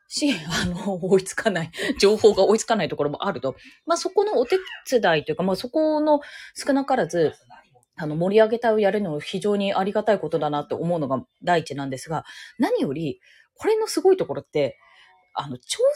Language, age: Japanese, 20-39